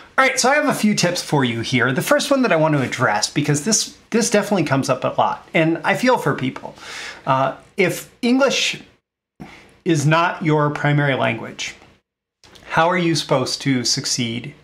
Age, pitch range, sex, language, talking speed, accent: 30-49, 130-160 Hz, male, English, 190 wpm, American